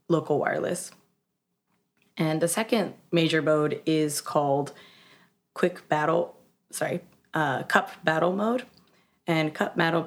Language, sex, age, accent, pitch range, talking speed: English, female, 20-39, American, 150-190 Hz, 115 wpm